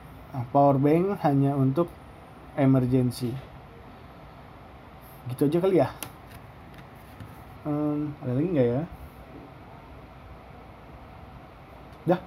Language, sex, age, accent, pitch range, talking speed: Indonesian, male, 20-39, native, 130-155 Hz, 75 wpm